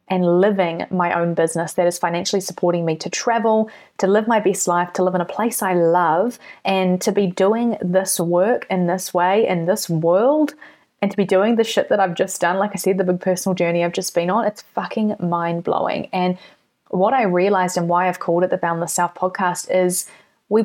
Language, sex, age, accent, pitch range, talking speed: English, female, 20-39, Australian, 180-205 Hz, 220 wpm